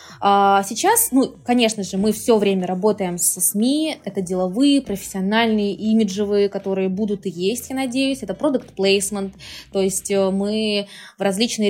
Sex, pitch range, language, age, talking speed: female, 190-225 Hz, Russian, 20-39, 145 wpm